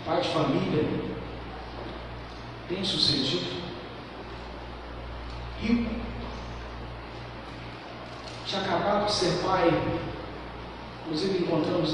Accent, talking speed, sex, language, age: Brazilian, 60 wpm, male, Portuguese, 60-79